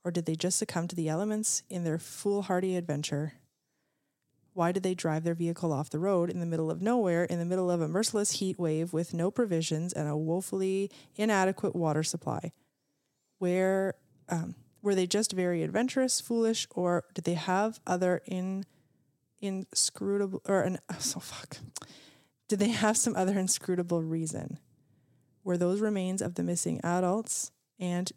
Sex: female